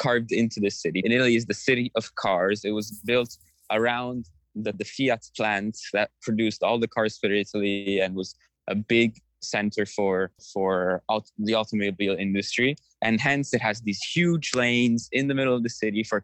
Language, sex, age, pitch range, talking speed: English, male, 20-39, 105-120 Hz, 190 wpm